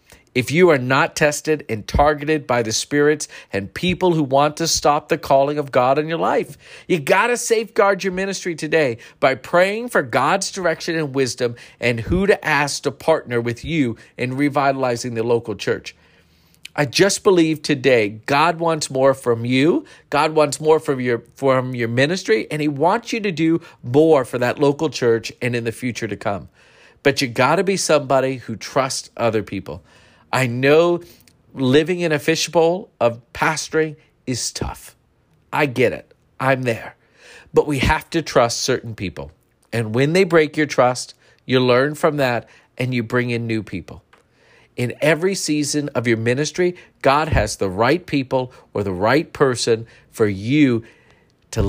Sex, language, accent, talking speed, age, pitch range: male, English, American, 175 wpm, 50-69, 120-160 Hz